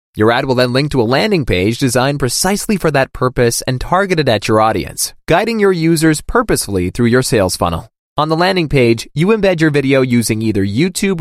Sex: male